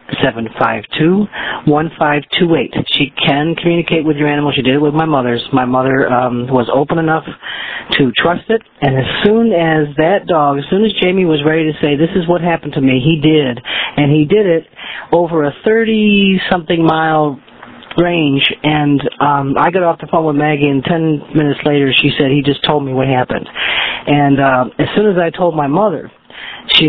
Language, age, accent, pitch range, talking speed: English, 40-59, American, 135-165 Hz, 205 wpm